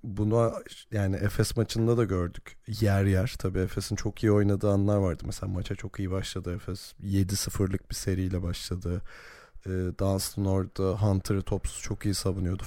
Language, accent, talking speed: Turkish, native, 155 wpm